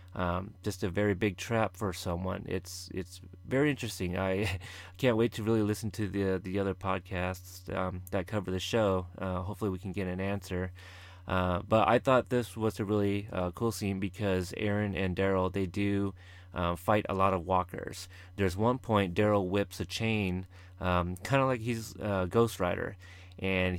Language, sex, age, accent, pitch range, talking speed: English, male, 30-49, American, 90-105 Hz, 185 wpm